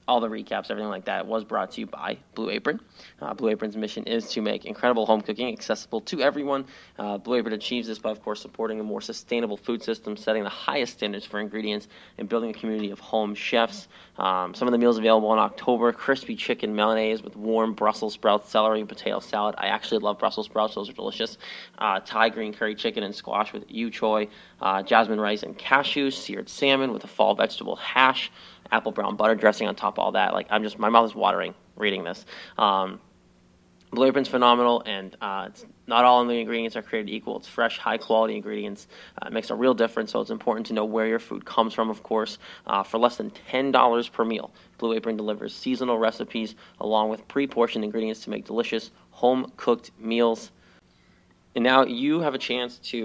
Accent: American